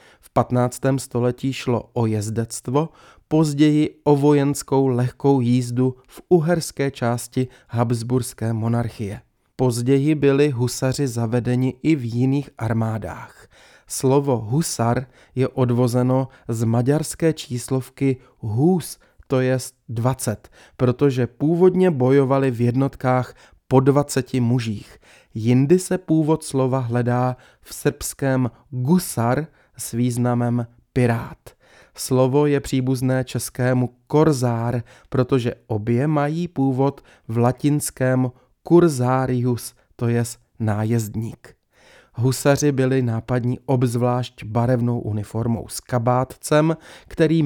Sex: male